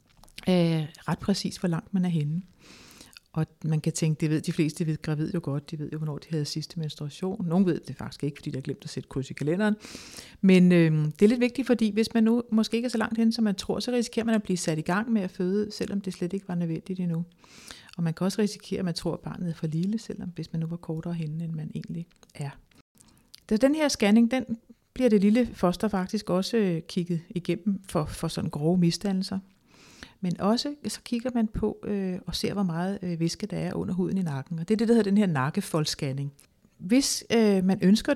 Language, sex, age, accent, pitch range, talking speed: Danish, female, 60-79, native, 170-220 Hz, 240 wpm